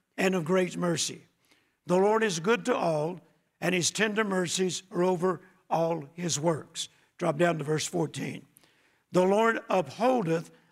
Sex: male